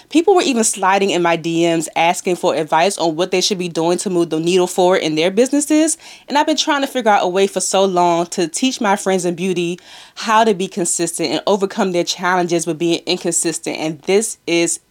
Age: 20-39